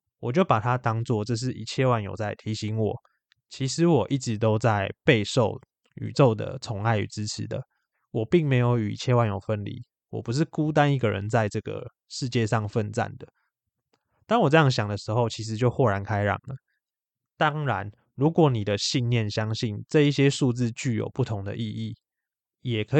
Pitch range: 110-135 Hz